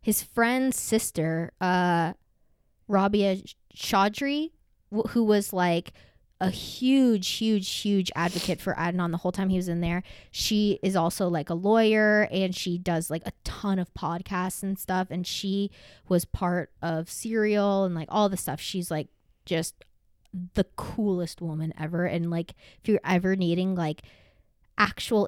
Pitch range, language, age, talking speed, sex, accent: 160-195 Hz, English, 20-39, 155 wpm, female, American